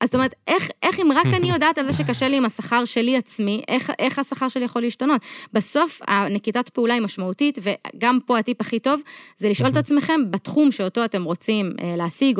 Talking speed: 205 wpm